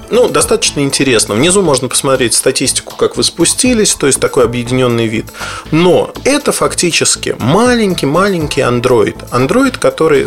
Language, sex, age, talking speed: Russian, male, 30-49, 130 wpm